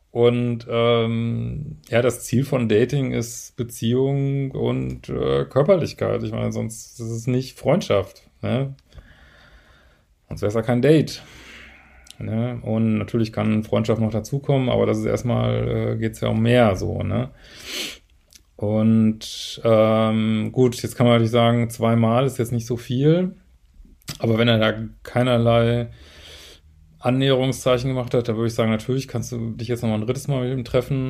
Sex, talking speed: male, 160 wpm